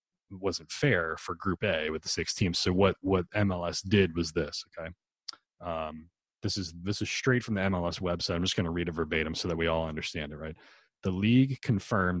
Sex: male